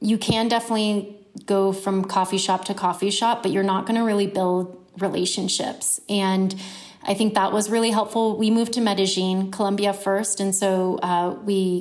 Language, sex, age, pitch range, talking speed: English, female, 30-49, 185-210 Hz, 175 wpm